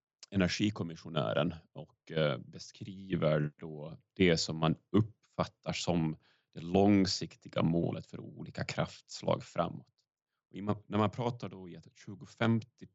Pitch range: 85-105 Hz